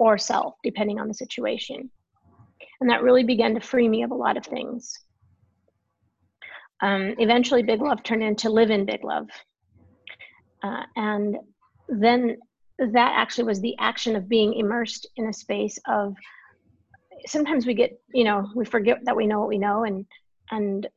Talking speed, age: 165 wpm, 30-49